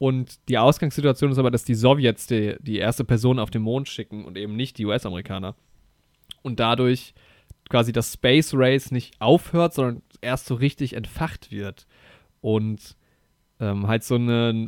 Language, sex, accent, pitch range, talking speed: German, male, German, 110-135 Hz, 165 wpm